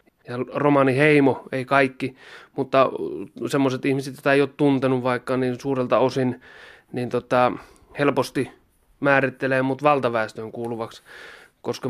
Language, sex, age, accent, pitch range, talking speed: Finnish, male, 30-49, native, 125-145 Hz, 125 wpm